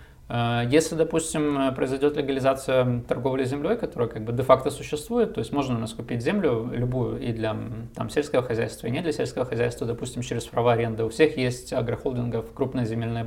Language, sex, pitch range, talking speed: Russian, male, 115-145 Hz, 175 wpm